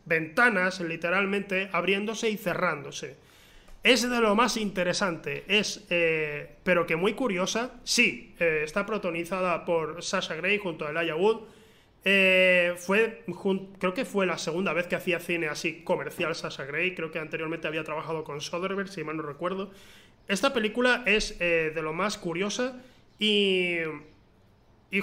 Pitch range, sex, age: 170-215 Hz, male, 20-39